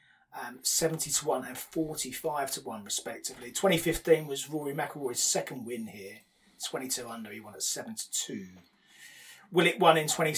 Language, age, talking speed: English, 30-49, 180 wpm